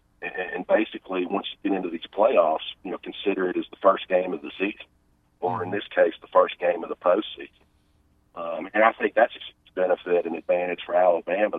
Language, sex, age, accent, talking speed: English, male, 40-59, American, 205 wpm